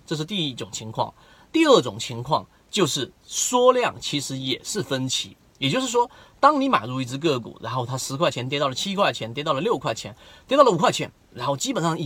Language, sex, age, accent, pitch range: Chinese, male, 30-49, native, 125-180 Hz